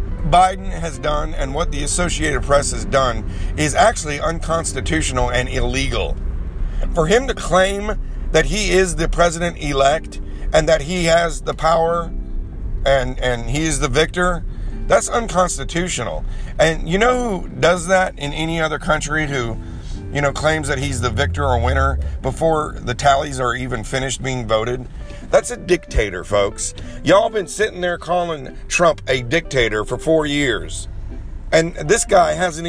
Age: 50-69